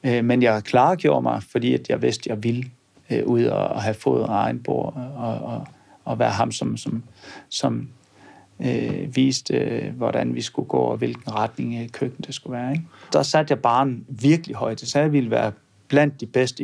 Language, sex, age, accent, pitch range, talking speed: Danish, male, 40-59, native, 115-145 Hz, 185 wpm